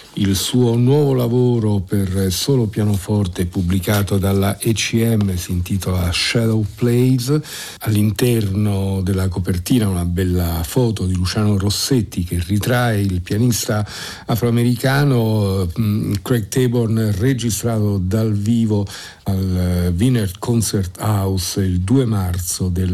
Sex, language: male, Italian